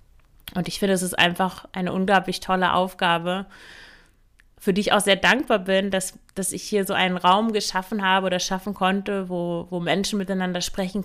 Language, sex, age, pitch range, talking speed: German, female, 30-49, 180-205 Hz, 185 wpm